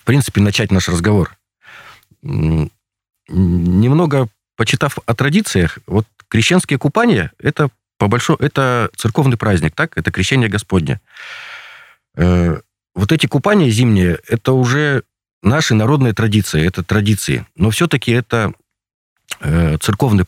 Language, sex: Russian, male